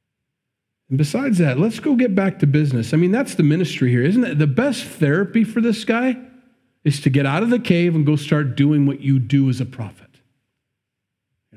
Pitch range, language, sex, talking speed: 115-150 Hz, English, male, 215 wpm